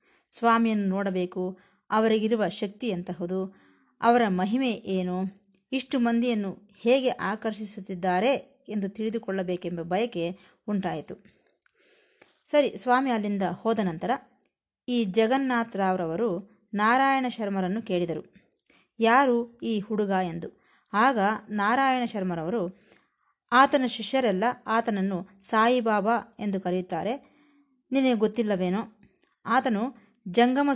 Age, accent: 20-39, native